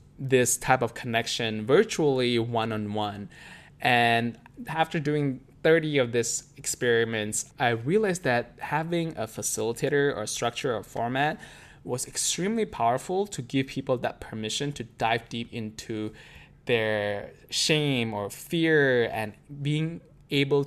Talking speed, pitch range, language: 120 wpm, 115-145 Hz, English